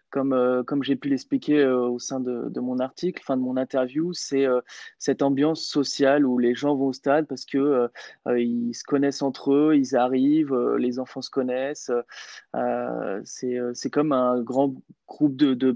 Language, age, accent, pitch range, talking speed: French, 20-39, French, 125-145 Hz, 205 wpm